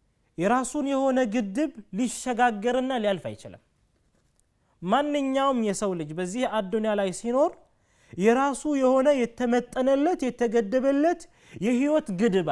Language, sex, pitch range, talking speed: Amharic, male, 195-275 Hz, 90 wpm